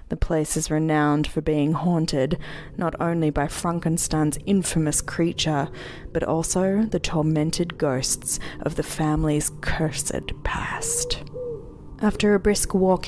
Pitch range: 150-180 Hz